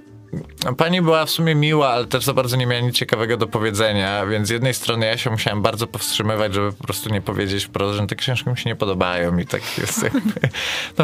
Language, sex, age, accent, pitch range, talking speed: Polish, male, 20-39, native, 100-130 Hz, 210 wpm